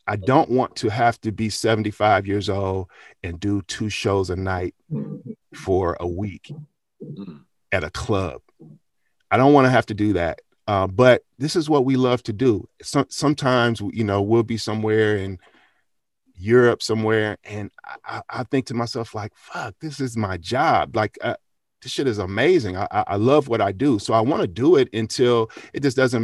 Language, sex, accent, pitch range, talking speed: English, male, American, 105-125 Hz, 190 wpm